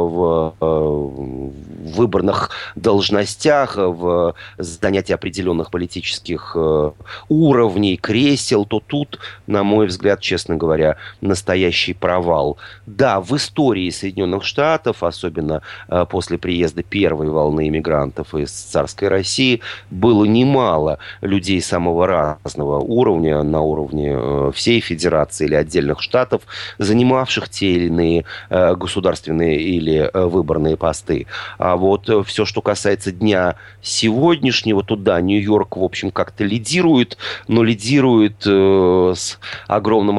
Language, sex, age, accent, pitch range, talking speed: Russian, male, 30-49, native, 85-105 Hz, 105 wpm